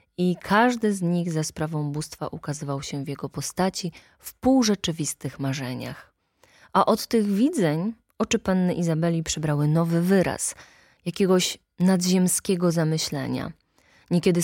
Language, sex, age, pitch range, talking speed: Polish, female, 20-39, 160-205 Hz, 120 wpm